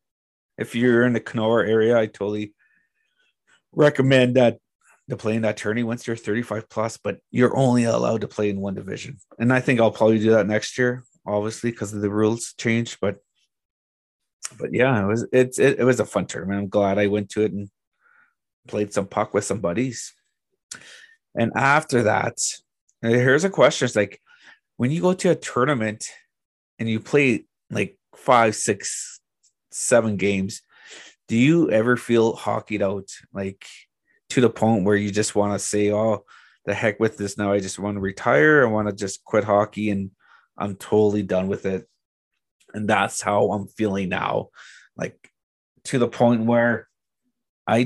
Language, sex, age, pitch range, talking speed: English, male, 30-49, 105-125 Hz, 175 wpm